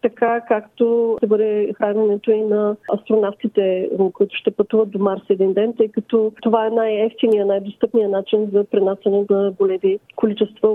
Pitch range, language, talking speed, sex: 210-245 Hz, Bulgarian, 150 wpm, female